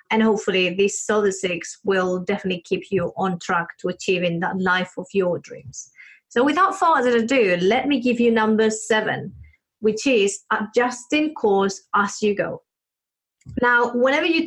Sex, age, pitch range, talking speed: female, 30-49, 195-250 Hz, 160 wpm